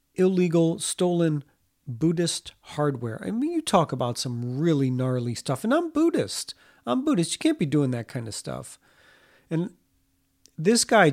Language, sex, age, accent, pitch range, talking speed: English, male, 40-59, American, 135-185 Hz, 155 wpm